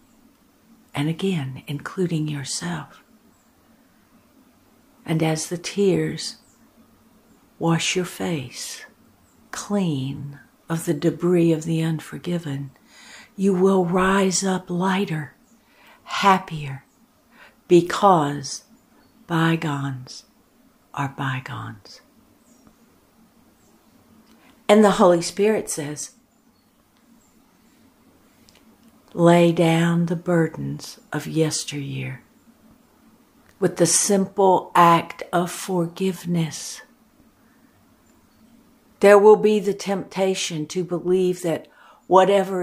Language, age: English, 60-79